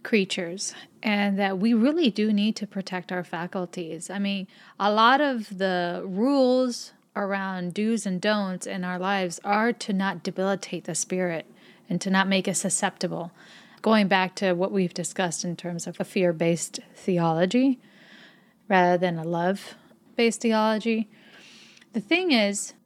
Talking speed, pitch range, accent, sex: 150 wpm, 185-225 Hz, American, female